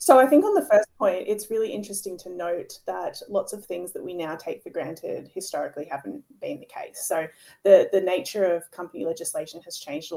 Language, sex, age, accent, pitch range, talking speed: English, female, 20-39, Australian, 175-285 Hz, 220 wpm